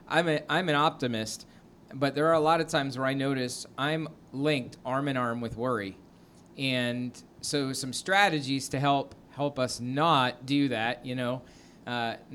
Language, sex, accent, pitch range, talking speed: English, male, American, 120-150 Hz, 170 wpm